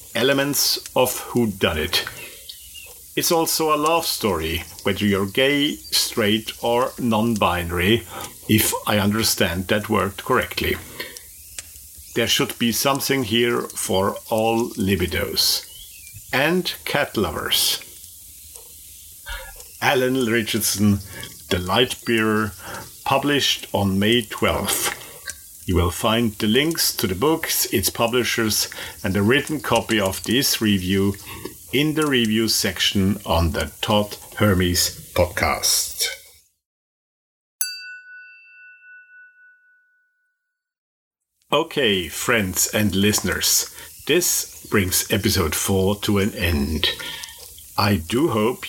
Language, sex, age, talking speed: English, male, 50-69, 100 wpm